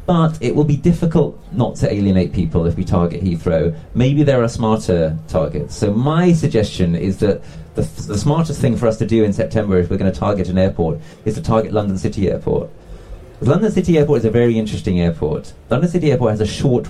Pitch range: 90-115 Hz